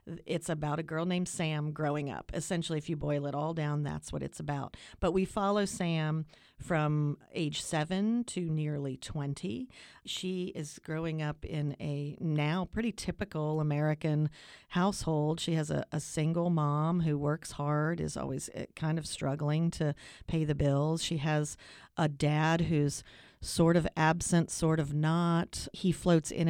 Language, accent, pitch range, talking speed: English, American, 150-175 Hz, 165 wpm